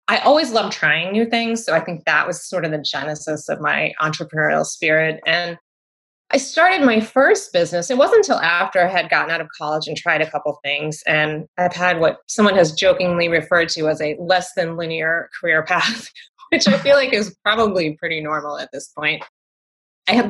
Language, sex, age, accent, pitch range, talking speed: English, female, 20-39, American, 155-195 Hz, 205 wpm